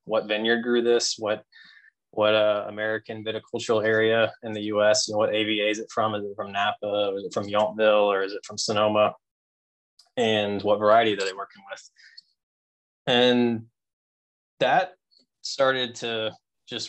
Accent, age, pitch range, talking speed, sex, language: American, 20-39, 105-115 Hz, 160 wpm, male, English